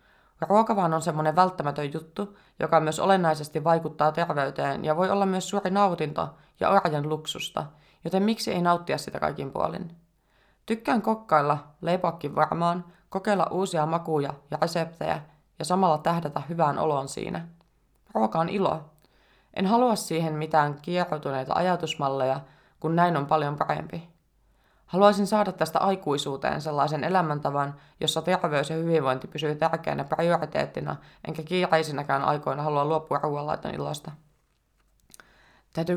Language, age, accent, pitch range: Finnish, 20-39, native, 150-175 Hz